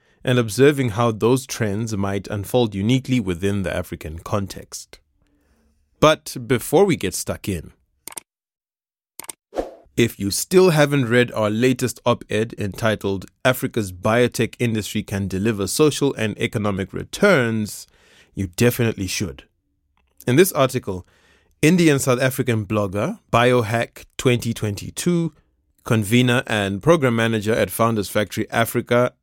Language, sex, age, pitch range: English, male, 20-39, 100-130 Hz